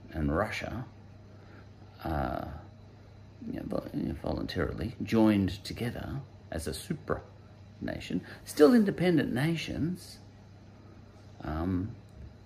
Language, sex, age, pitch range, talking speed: English, male, 50-69, 100-110 Hz, 65 wpm